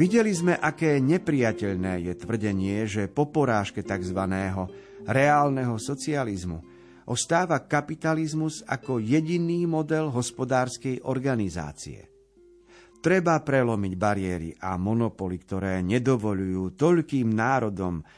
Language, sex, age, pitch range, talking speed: Slovak, male, 50-69, 105-145 Hz, 90 wpm